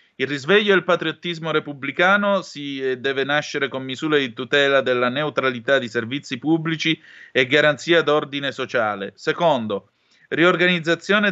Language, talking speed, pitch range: Italian, 125 wpm, 135-160 Hz